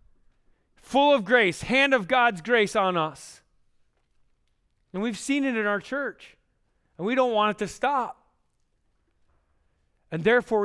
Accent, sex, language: American, male, English